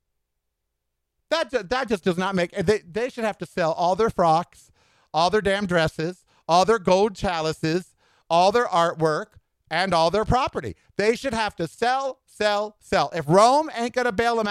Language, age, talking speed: English, 50-69, 175 wpm